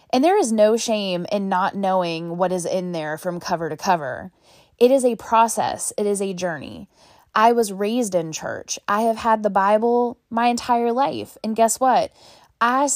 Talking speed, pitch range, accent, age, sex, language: 190 wpm, 190-245 Hz, American, 10-29, female, English